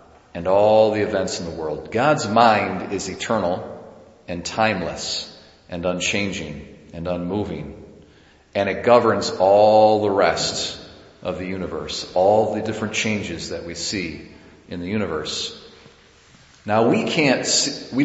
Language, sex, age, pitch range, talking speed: English, male, 40-59, 95-115 Hz, 135 wpm